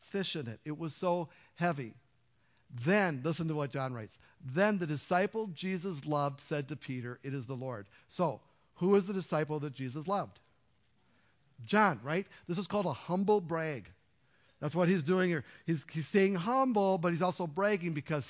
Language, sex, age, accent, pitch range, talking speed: English, male, 50-69, American, 145-185 Hz, 170 wpm